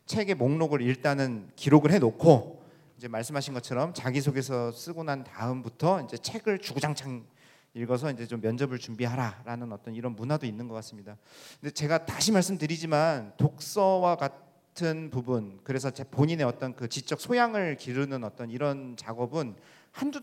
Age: 40-59